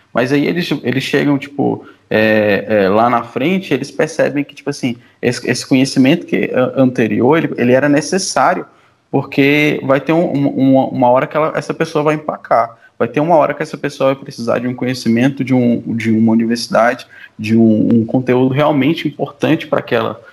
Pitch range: 120-145 Hz